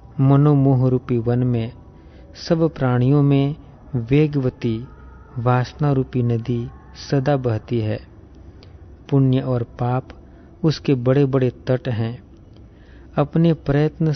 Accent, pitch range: native, 115-135 Hz